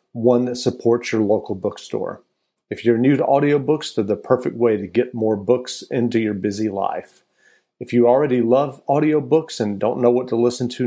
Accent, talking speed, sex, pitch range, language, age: American, 195 wpm, male, 115-135 Hz, English, 40-59